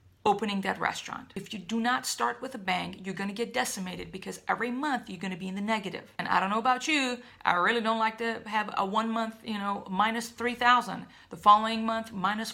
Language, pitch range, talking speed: English, 195-235 Hz, 235 wpm